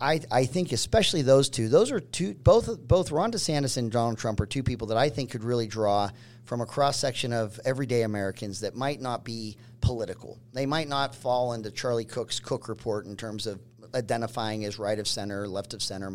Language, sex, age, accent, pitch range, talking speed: English, male, 40-59, American, 115-140 Hz, 210 wpm